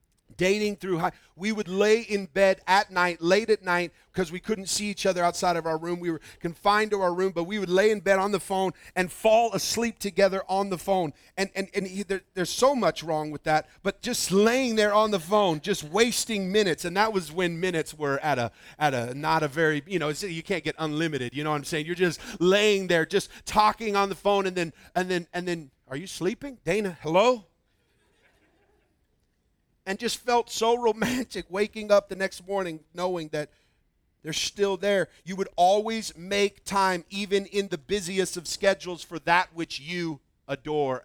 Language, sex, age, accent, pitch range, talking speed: English, male, 40-59, American, 150-200 Hz, 205 wpm